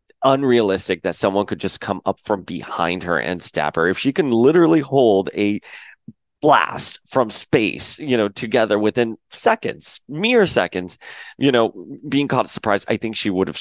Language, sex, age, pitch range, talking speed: English, male, 30-49, 95-120 Hz, 170 wpm